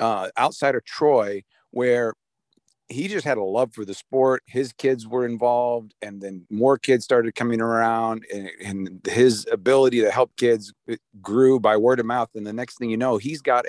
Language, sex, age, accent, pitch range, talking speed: English, male, 50-69, American, 105-130 Hz, 190 wpm